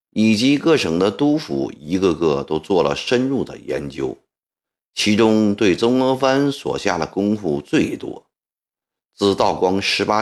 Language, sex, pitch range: Chinese, male, 90-135 Hz